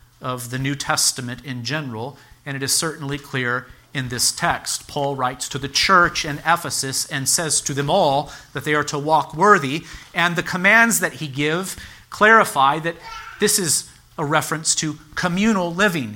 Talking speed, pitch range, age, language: 175 wpm, 135-175 Hz, 40-59, English